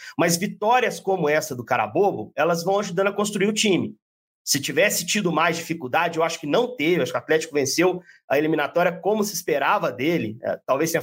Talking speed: 195 wpm